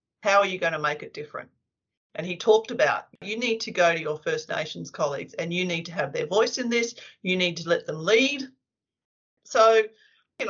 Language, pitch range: English, 180-225 Hz